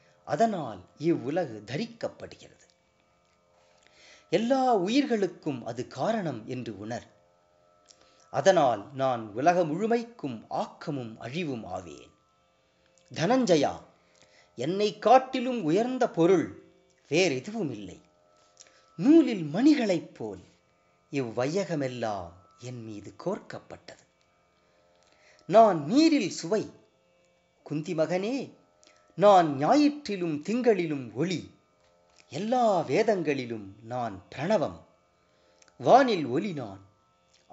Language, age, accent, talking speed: English, 30-49, Indian, 70 wpm